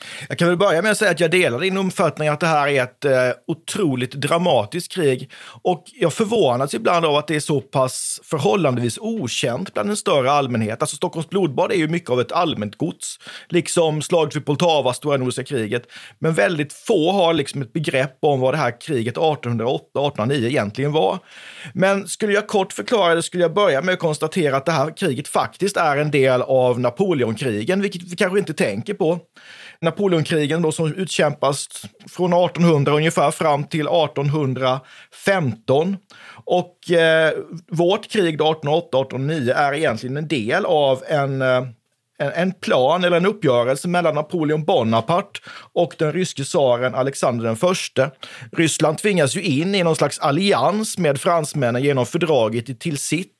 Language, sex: Swedish, male